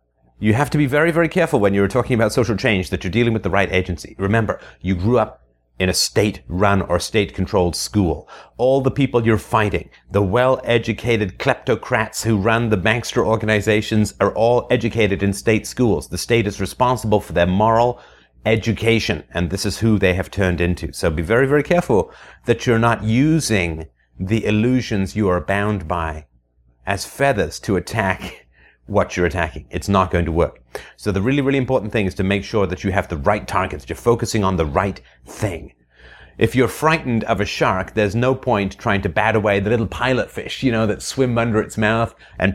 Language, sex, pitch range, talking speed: English, male, 90-115 Hz, 195 wpm